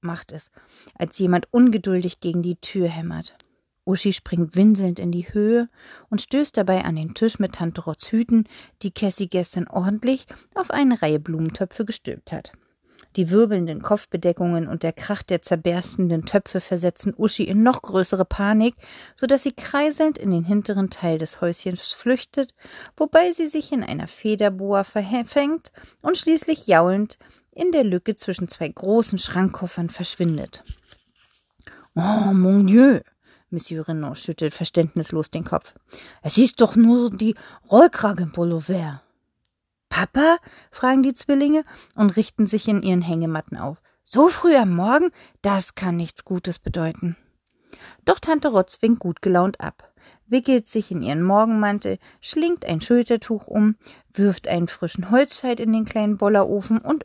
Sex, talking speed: female, 145 wpm